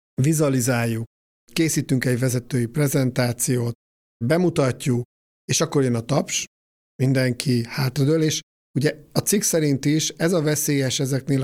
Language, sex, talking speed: Hungarian, male, 120 wpm